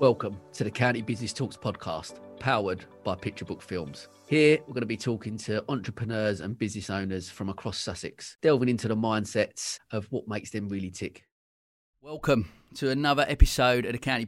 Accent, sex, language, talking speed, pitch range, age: British, male, English, 180 wpm, 100-115 Hz, 30-49